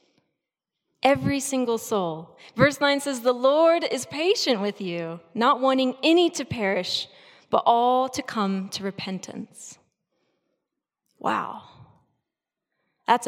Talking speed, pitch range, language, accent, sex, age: 115 wpm, 195-275 Hz, English, American, female, 20-39